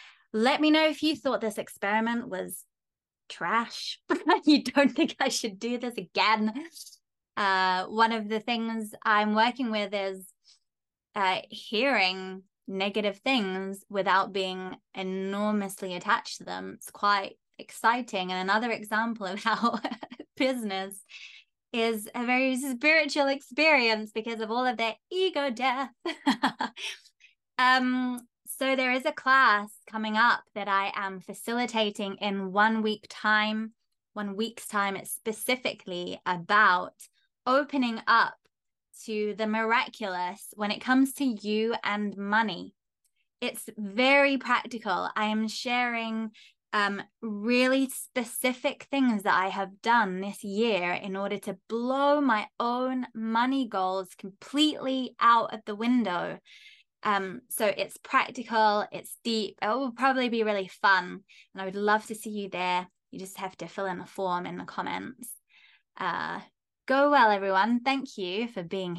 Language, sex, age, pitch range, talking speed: English, female, 20-39, 200-255 Hz, 140 wpm